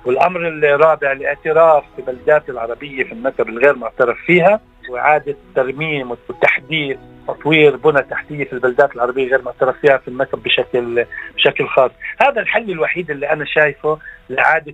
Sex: male